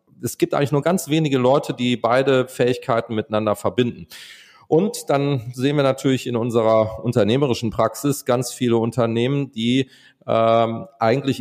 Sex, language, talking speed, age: male, German, 135 wpm, 40-59